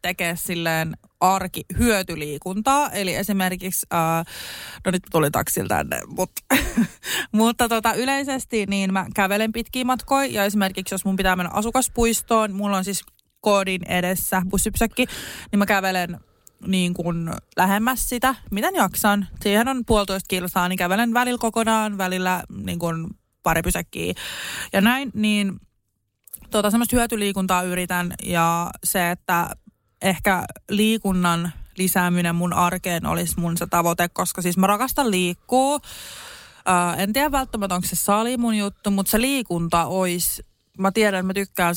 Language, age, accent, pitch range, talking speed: Finnish, 20-39, native, 175-215 Hz, 135 wpm